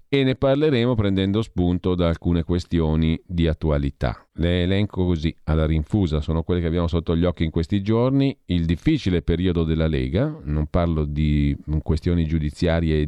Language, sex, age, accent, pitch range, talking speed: Italian, male, 40-59, native, 75-95 Hz, 165 wpm